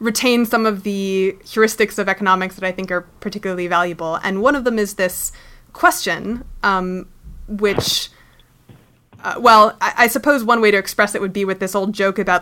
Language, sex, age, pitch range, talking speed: English, female, 20-39, 185-230 Hz, 190 wpm